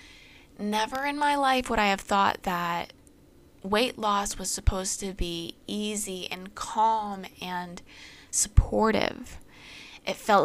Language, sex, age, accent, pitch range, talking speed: English, female, 20-39, American, 185-225 Hz, 125 wpm